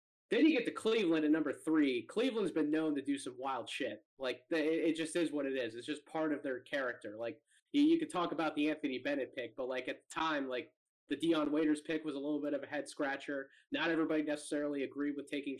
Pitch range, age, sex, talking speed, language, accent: 140-195 Hz, 20-39, male, 235 wpm, English, American